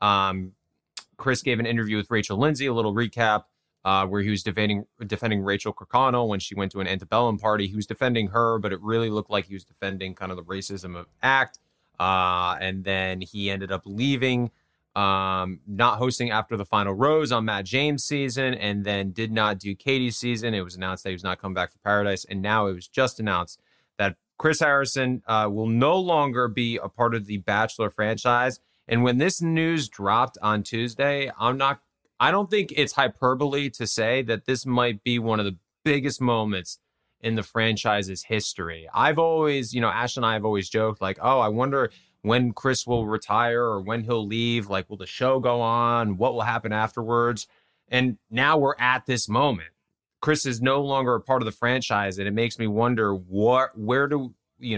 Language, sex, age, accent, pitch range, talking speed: English, male, 20-39, American, 100-125 Hz, 205 wpm